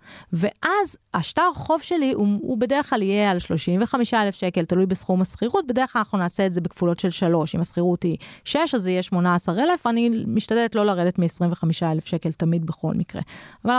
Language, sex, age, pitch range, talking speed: Hebrew, female, 30-49, 180-245 Hz, 185 wpm